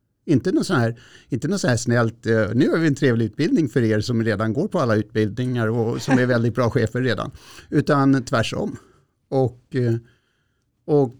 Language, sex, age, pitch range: Swedish, male, 60-79, 110-140 Hz